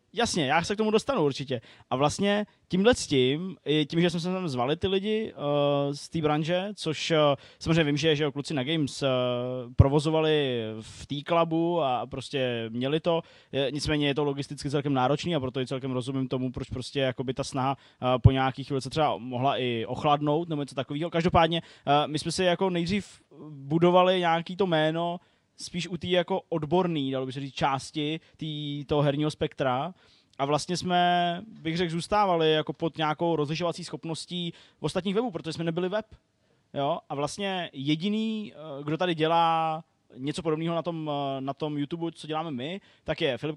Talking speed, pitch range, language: 180 wpm, 140-170 Hz, Czech